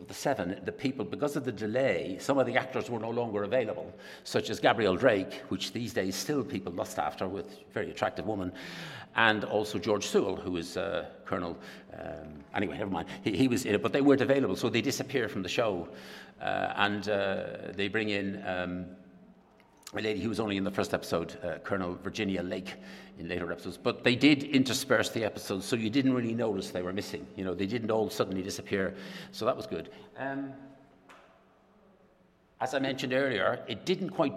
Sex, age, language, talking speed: male, 60-79, Italian, 195 wpm